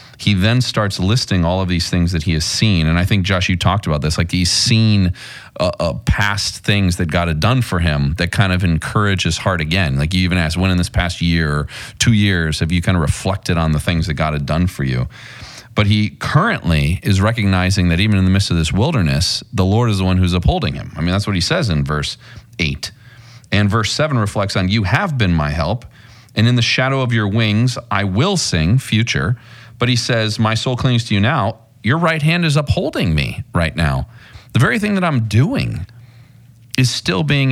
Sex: male